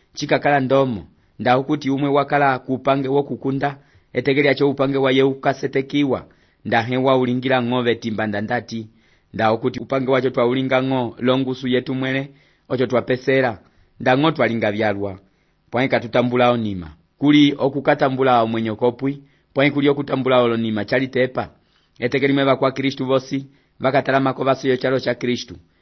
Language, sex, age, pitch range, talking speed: English, male, 30-49, 120-135 Hz, 135 wpm